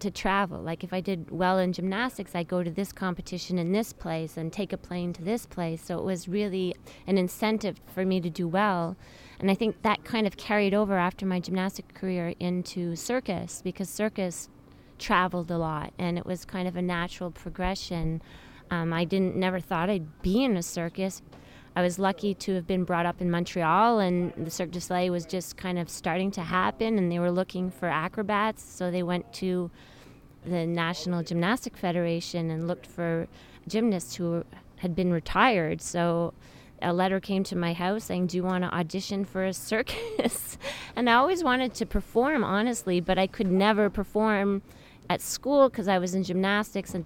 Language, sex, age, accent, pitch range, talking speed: English, female, 30-49, American, 175-200 Hz, 195 wpm